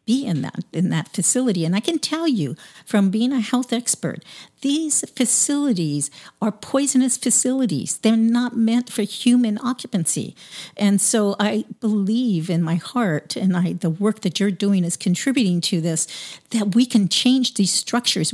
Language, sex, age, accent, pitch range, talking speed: English, female, 50-69, American, 170-230 Hz, 165 wpm